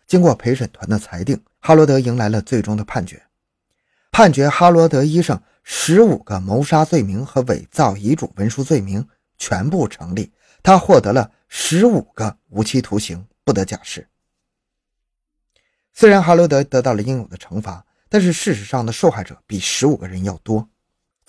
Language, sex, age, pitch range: Chinese, male, 20-39, 105-155 Hz